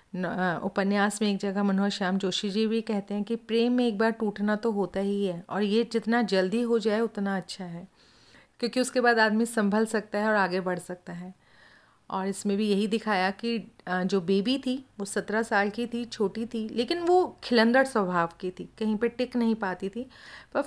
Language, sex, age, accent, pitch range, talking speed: Hindi, female, 40-59, native, 190-235 Hz, 210 wpm